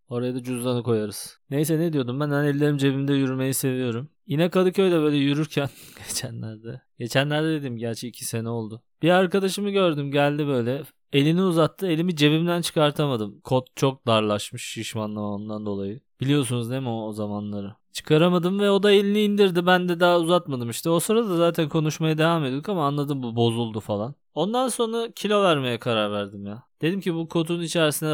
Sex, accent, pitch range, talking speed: male, native, 120-165 Hz, 170 wpm